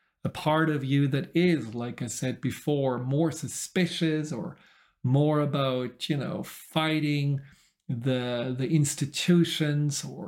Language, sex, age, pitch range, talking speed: English, male, 40-59, 135-160 Hz, 130 wpm